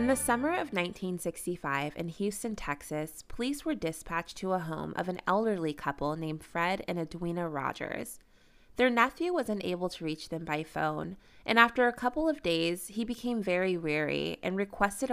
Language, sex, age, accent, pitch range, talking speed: English, female, 20-39, American, 160-230 Hz, 175 wpm